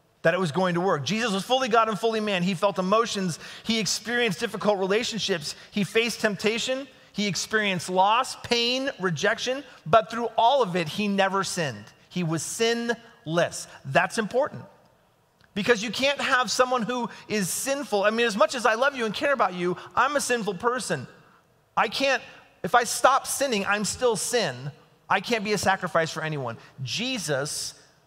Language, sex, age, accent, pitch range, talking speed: English, male, 30-49, American, 165-225 Hz, 175 wpm